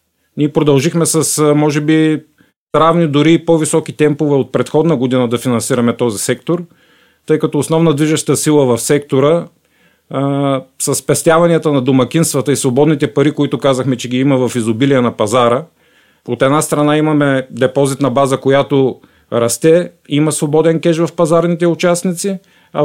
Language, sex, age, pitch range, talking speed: Bulgarian, male, 40-59, 130-160 Hz, 145 wpm